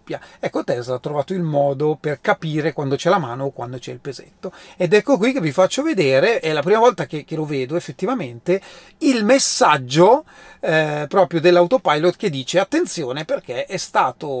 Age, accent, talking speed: 30-49, native, 185 wpm